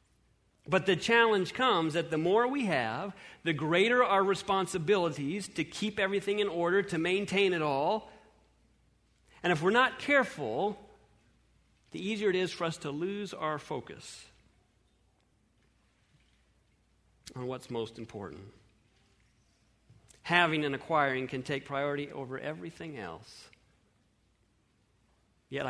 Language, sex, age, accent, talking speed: English, male, 40-59, American, 120 wpm